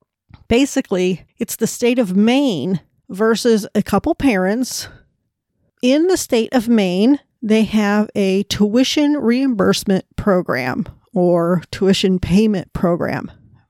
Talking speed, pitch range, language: 110 wpm, 185-235 Hz, English